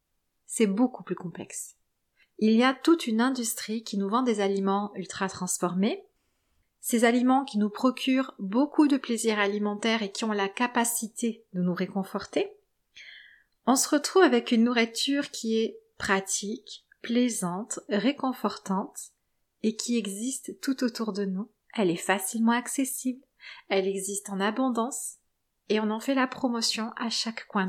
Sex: female